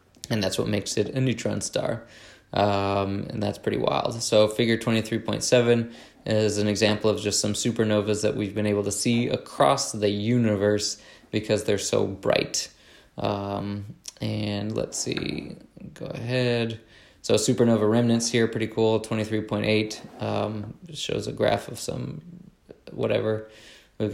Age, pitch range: 20-39, 105-115 Hz